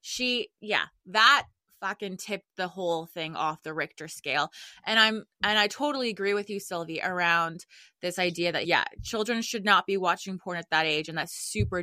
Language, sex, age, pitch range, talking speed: English, female, 20-39, 185-255 Hz, 195 wpm